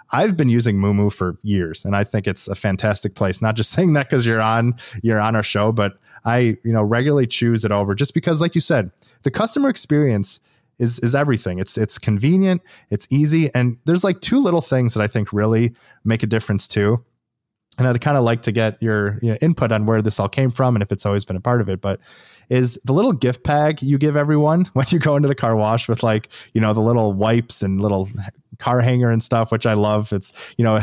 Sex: male